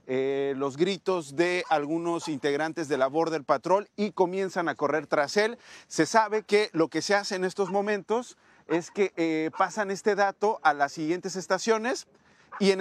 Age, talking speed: 40-59, 180 wpm